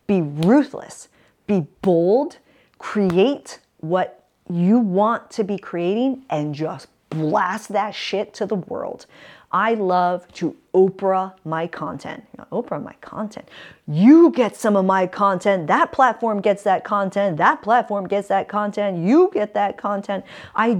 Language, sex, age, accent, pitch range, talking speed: English, female, 40-59, American, 165-220 Hz, 140 wpm